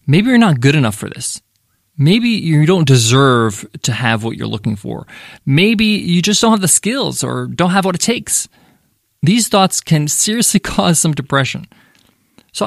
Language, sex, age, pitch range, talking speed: English, male, 20-39, 135-195 Hz, 180 wpm